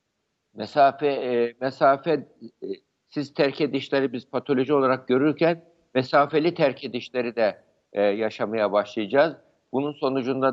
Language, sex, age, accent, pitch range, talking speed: Turkish, male, 60-79, native, 120-150 Hz, 110 wpm